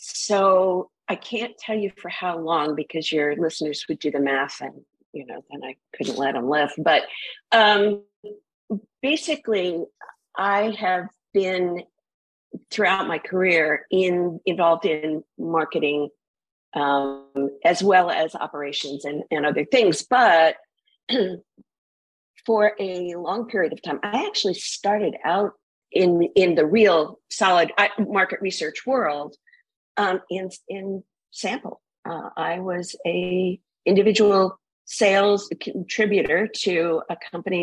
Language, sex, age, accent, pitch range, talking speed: English, female, 50-69, American, 160-210 Hz, 125 wpm